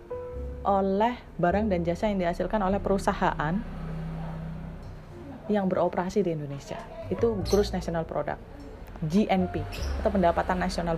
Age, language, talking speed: 30-49, Indonesian, 110 wpm